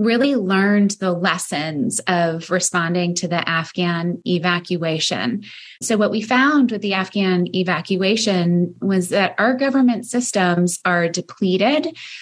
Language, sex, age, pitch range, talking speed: English, female, 20-39, 185-210 Hz, 125 wpm